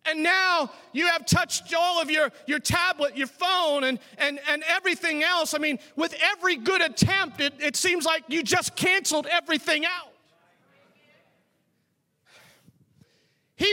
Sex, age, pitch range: male, 40-59, 275-350 Hz